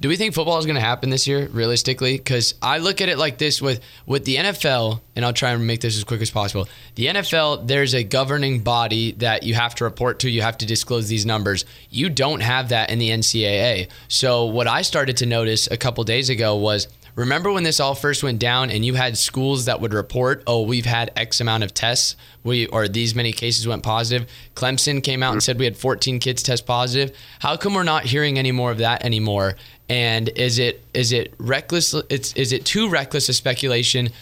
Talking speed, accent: 230 wpm, American